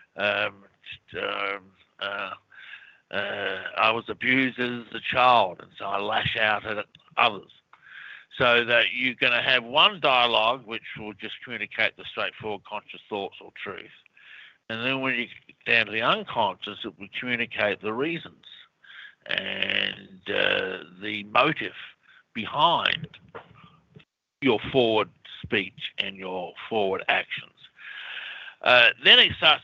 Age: 50-69